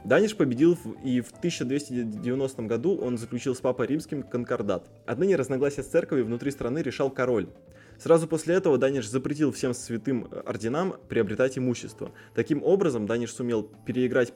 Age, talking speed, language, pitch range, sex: 20-39, 145 wpm, Russian, 115-145 Hz, male